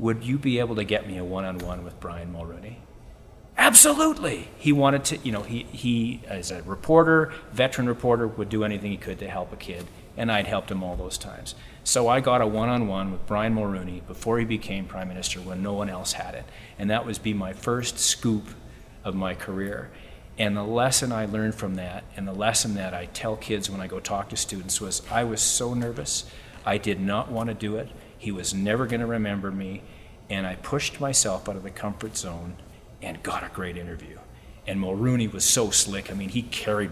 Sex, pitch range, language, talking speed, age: male, 95-115 Hz, English, 215 wpm, 40-59